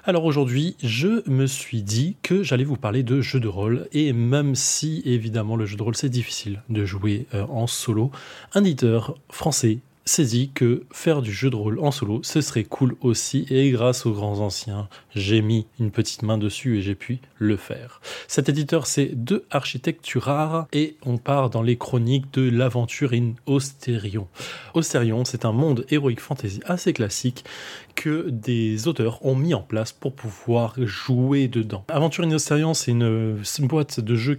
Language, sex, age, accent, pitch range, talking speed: French, male, 20-39, French, 115-140 Hz, 180 wpm